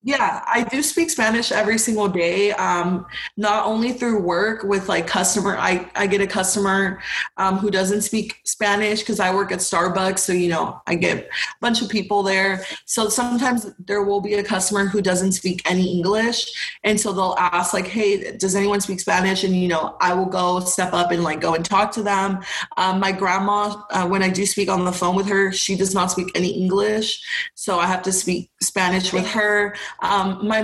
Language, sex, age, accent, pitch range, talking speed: English, female, 20-39, American, 185-210 Hz, 210 wpm